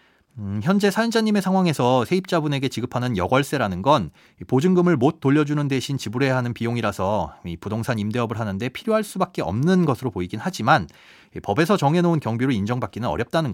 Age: 30-49